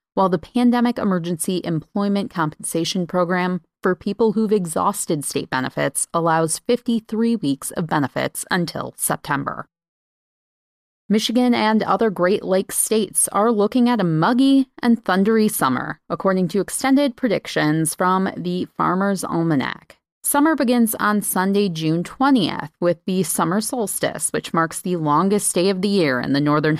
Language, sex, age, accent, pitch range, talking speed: English, female, 30-49, American, 165-220 Hz, 140 wpm